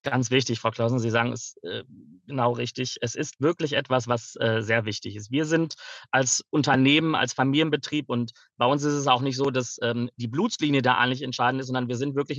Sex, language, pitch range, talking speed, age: male, German, 120-145 Hz, 220 wpm, 30-49